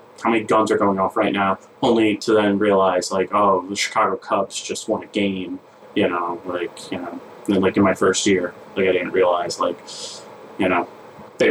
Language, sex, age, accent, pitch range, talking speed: English, male, 30-49, American, 100-130 Hz, 210 wpm